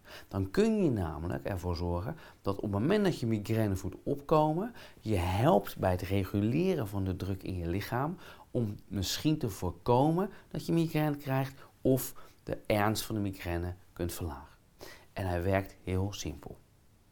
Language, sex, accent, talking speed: Dutch, male, Dutch, 165 wpm